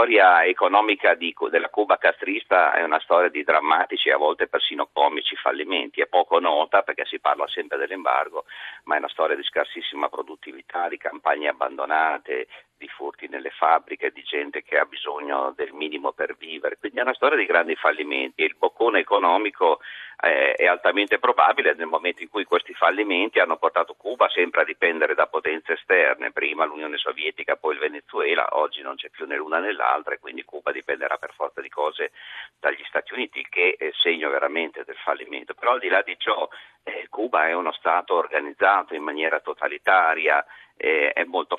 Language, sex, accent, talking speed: Italian, male, native, 185 wpm